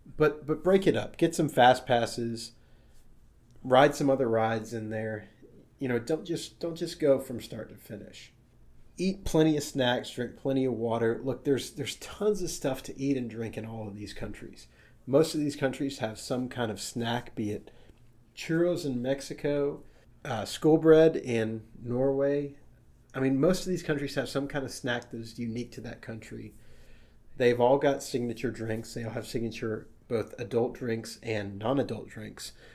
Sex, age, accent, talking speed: male, 30-49, American, 185 wpm